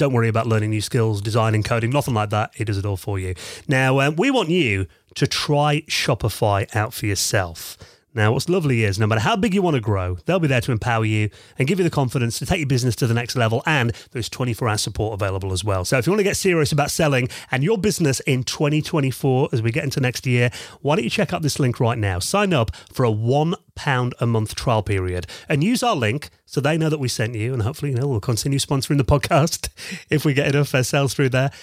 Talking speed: 250 wpm